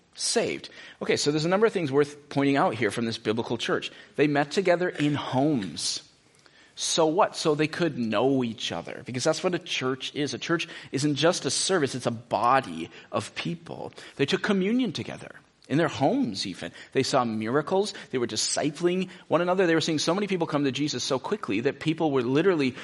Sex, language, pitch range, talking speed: male, English, 130-180 Hz, 200 wpm